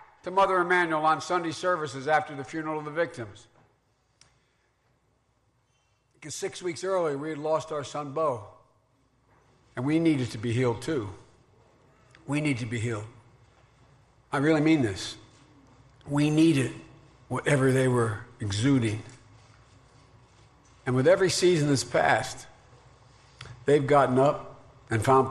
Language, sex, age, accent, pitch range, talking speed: English, male, 60-79, American, 120-145 Hz, 130 wpm